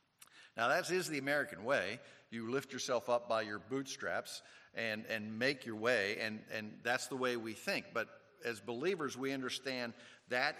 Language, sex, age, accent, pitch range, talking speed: English, male, 50-69, American, 115-140 Hz, 175 wpm